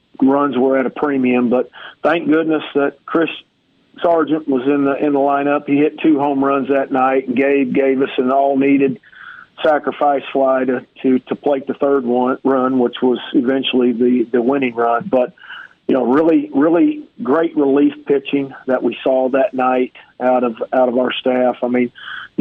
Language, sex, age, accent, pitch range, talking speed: English, male, 40-59, American, 130-140 Hz, 180 wpm